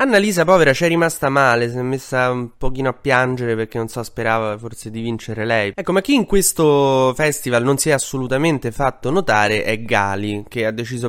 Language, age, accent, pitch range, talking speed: Italian, 20-39, native, 110-130 Hz, 205 wpm